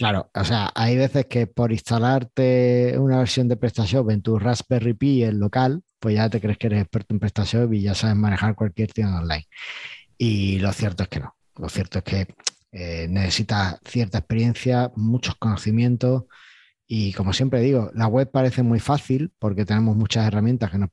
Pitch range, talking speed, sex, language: 100-120 Hz, 185 wpm, male, Spanish